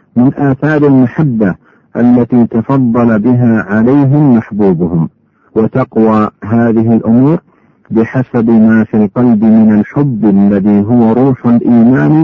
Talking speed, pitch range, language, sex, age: 105 wpm, 110-135 Hz, Arabic, male, 50-69